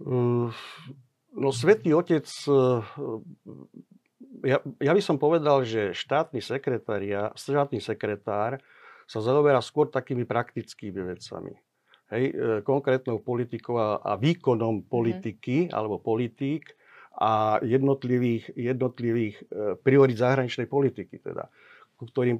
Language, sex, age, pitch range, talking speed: Slovak, male, 50-69, 110-130 Hz, 90 wpm